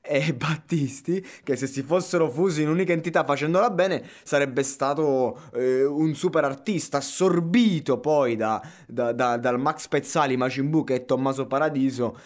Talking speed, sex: 150 wpm, male